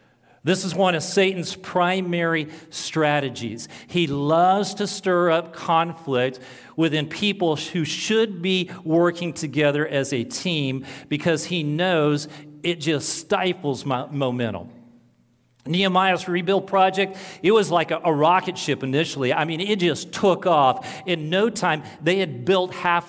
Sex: male